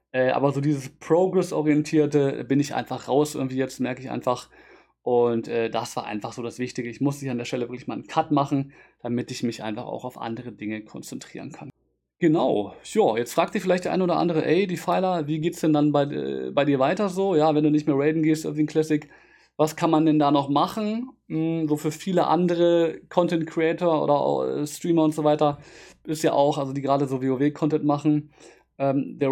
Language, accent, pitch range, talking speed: German, German, 135-160 Hz, 215 wpm